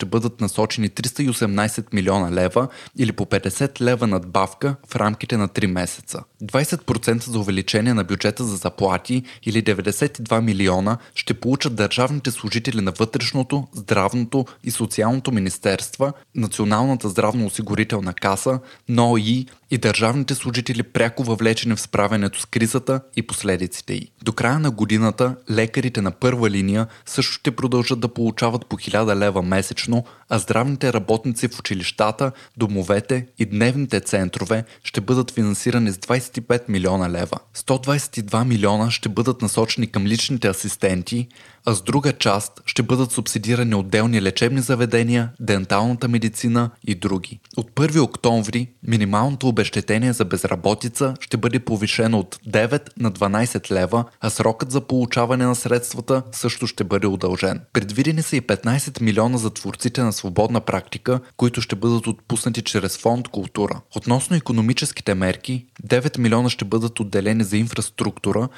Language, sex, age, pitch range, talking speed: Bulgarian, male, 20-39, 105-125 Hz, 140 wpm